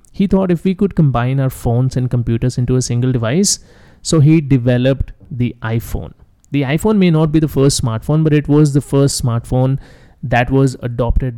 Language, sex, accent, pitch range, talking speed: English, male, Indian, 120-145 Hz, 190 wpm